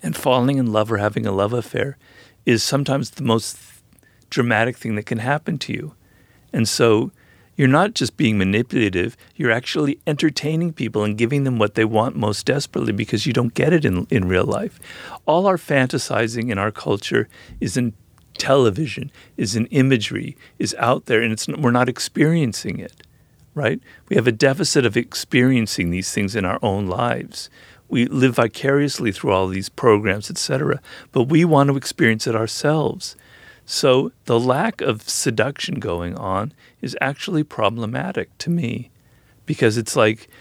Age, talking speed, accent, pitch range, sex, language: 50-69, 170 wpm, American, 110-135 Hz, male, English